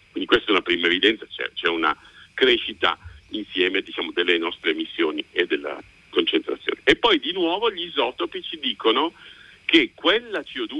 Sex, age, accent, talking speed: male, 50-69, native, 165 wpm